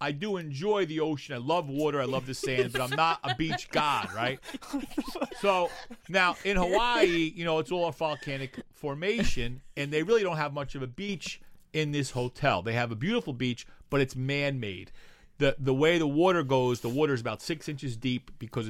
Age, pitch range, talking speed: 40-59, 120-165 Hz, 205 wpm